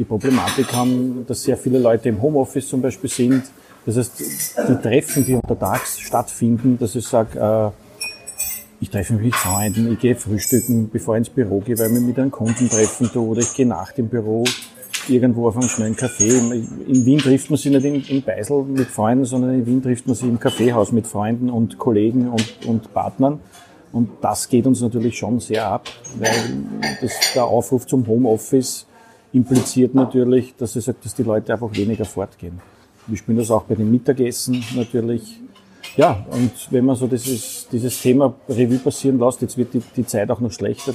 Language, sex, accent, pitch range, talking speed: German, male, Austrian, 115-130 Hz, 195 wpm